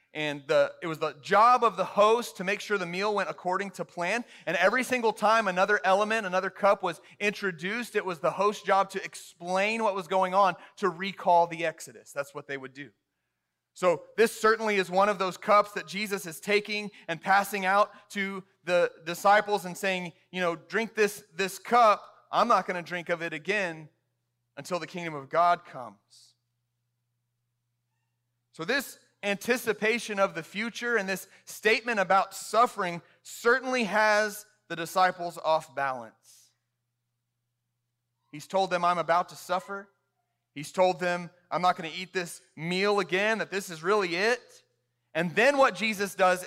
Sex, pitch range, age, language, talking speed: male, 155-205 Hz, 30-49, English, 170 wpm